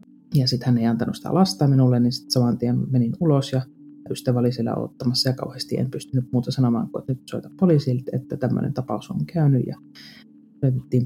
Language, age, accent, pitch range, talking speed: Finnish, 30-49, native, 120-145 Hz, 190 wpm